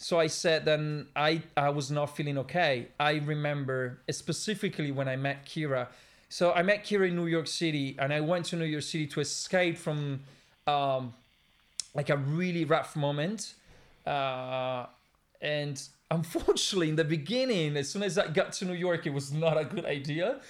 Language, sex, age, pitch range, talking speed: English, male, 30-49, 140-175 Hz, 180 wpm